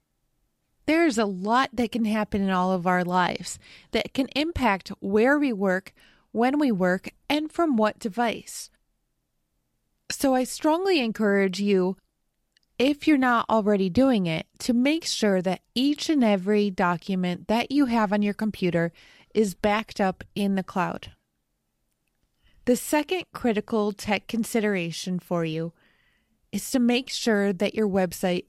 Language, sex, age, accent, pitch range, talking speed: English, female, 30-49, American, 200-250 Hz, 145 wpm